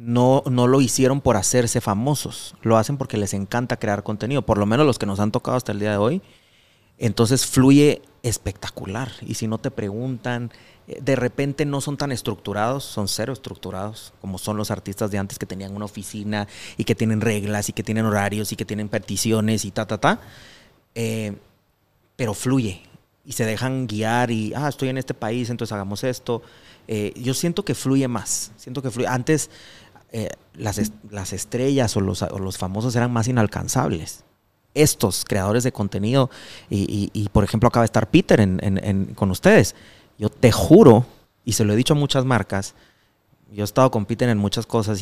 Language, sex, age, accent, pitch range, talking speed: Spanish, male, 30-49, Mexican, 105-125 Hz, 190 wpm